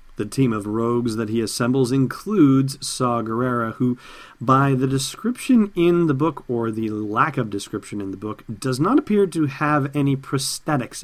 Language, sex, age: English, male, 40-59